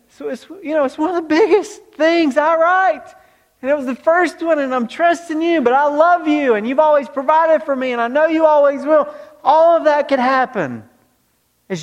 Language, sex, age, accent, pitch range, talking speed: English, male, 40-59, American, 190-275 Hz, 225 wpm